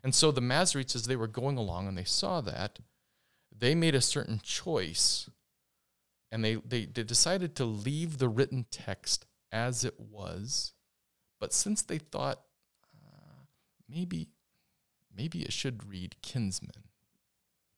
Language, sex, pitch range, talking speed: English, male, 105-135 Hz, 140 wpm